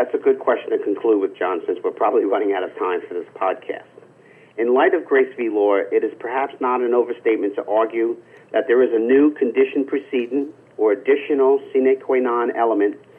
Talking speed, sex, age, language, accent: 205 wpm, male, 50-69, English, American